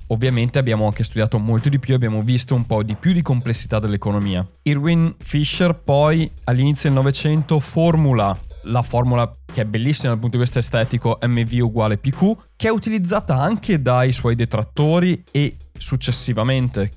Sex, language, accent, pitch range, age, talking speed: male, Italian, native, 110-140 Hz, 20-39, 160 wpm